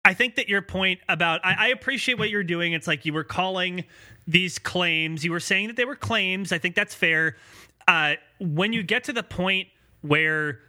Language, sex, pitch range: English, male, 155-210 Hz